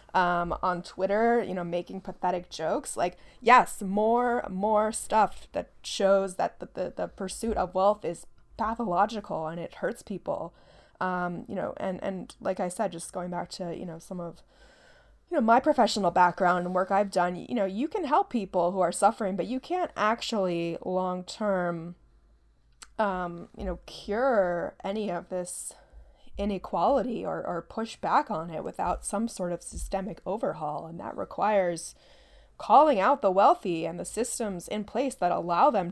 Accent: American